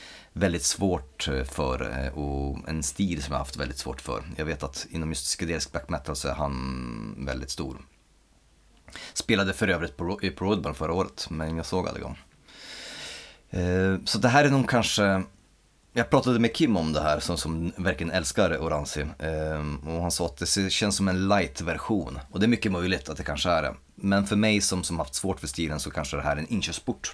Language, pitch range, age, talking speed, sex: Swedish, 75-95 Hz, 30-49, 195 wpm, male